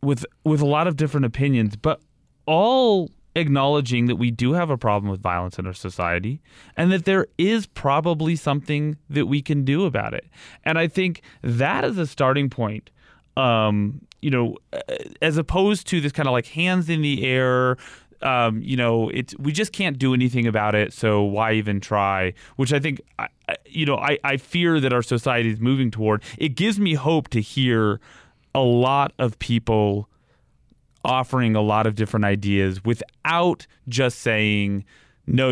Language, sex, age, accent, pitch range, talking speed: English, male, 30-49, American, 110-145 Hz, 175 wpm